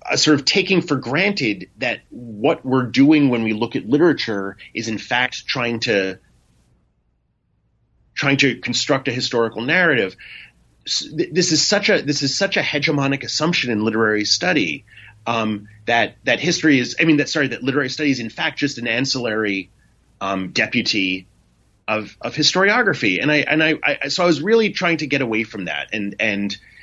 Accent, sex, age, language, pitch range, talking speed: American, male, 30-49, English, 100-140 Hz, 180 wpm